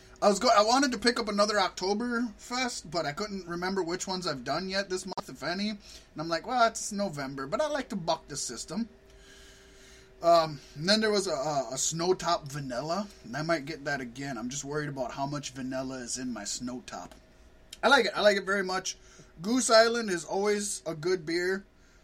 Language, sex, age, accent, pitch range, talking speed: English, male, 20-39, American, 150-200 Hz, 210 wpm